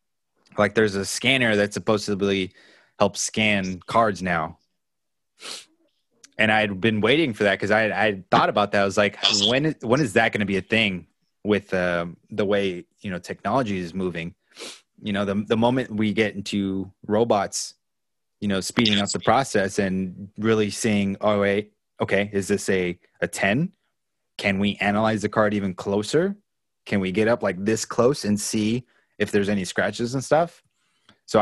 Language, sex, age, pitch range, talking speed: English, male, 20-39, 100-120 Hz, 185 wpm